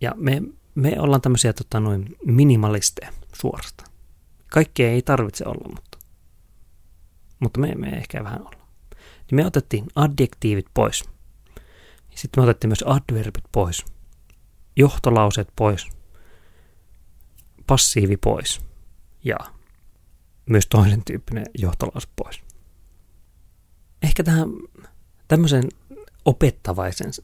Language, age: Finnish, 30-49